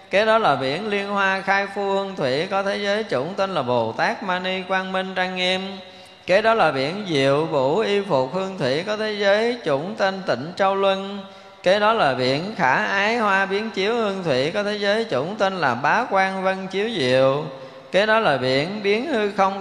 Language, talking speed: Vietnamese, 215 wpm